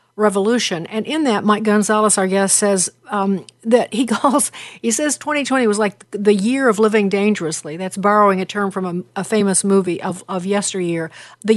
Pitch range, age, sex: 185-230 Hz, 50-69, female